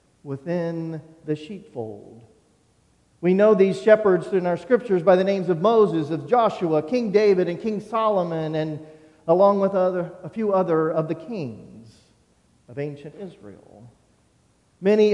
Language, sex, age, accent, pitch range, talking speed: English, male, 40-59, American, 155-210 Hz, 145 wpm